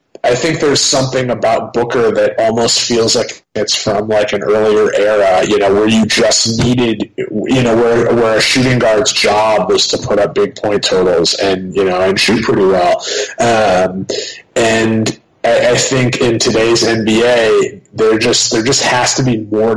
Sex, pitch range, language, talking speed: male, 105-125 Hz, English, 180 wpm